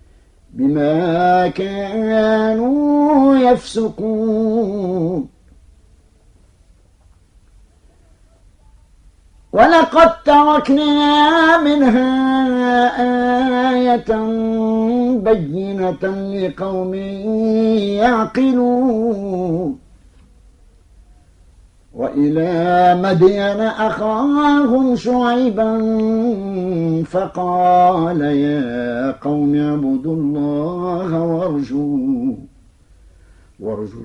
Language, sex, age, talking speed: Arabic, male, 50-69, 35 wpm